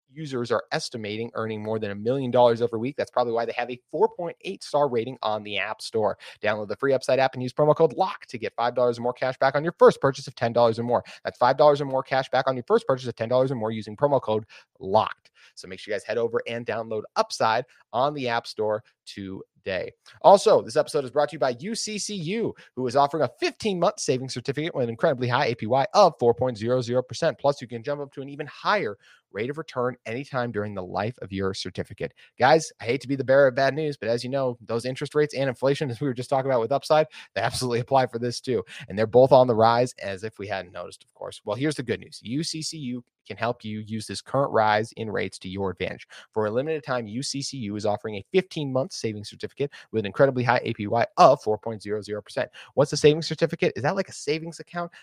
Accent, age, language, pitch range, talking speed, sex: American, 30-49, English, 115-145 Hz, 235 wpm, male